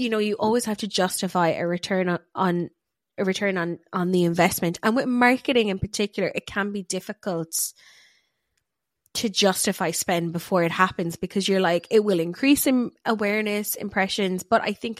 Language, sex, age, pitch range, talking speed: English, female, 20-39, 170-205 Hz, 175 wpm